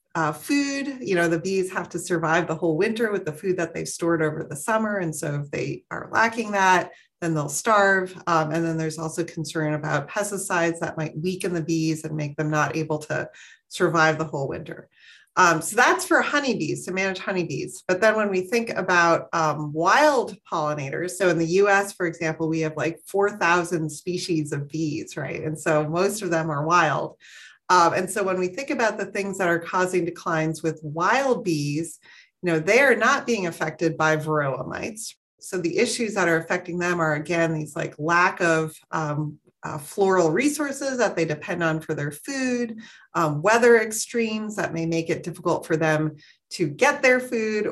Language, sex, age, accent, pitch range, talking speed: English, female, 30-49, American, 160-195 Hz, 195 wpm